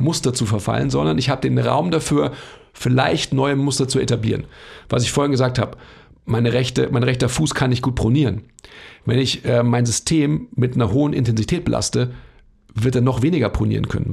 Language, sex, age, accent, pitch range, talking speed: German, male, 40-59, German, 120-135 Hz, 185 wpm